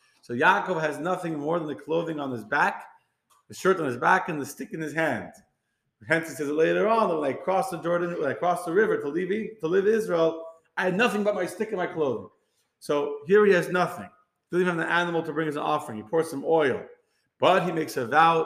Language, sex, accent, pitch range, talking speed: English, male, American, 150-190 Hz, 245 wpm